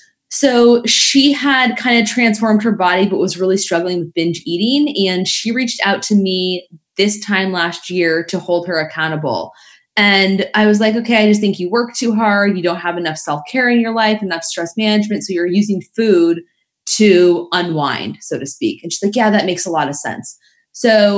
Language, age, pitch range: English, 20-39, 180-235 Hz